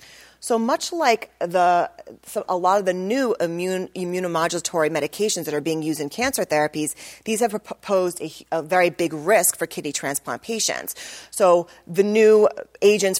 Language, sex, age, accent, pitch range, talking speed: English, female, 30-49, American, 155-210 Hz, 165 wpm